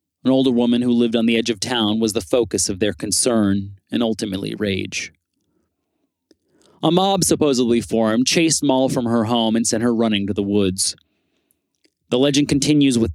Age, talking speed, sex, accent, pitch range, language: 30-49, 180 wpm, male, American, 100-135 Hz, English